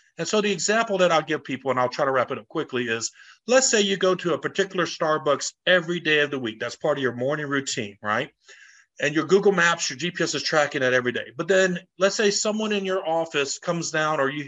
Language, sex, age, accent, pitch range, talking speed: English, male, 40-59, American, 150-200 Hz, 250 wpm